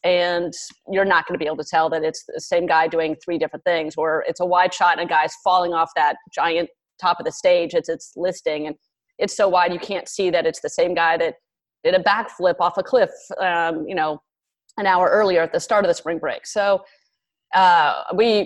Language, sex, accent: English, female, American